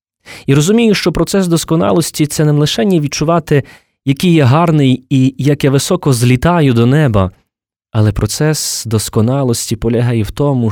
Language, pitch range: Ukrainian, 110-145 Hz